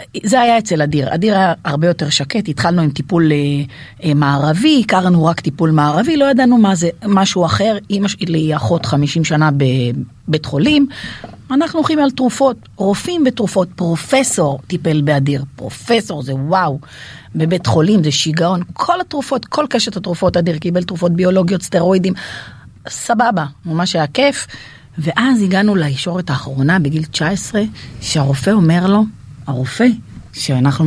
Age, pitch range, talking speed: 40-59, 145-205 Hz, 140 wpm